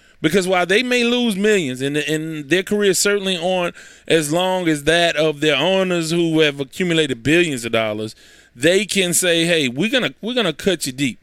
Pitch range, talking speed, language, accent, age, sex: 145-205 Hz, 200 wpm, English, American, 20-39, male